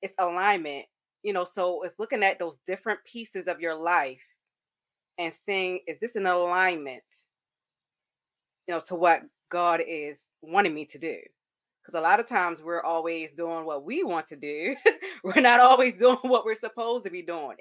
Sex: female